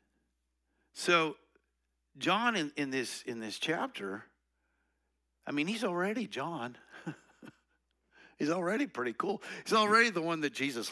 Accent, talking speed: American, 125 wpm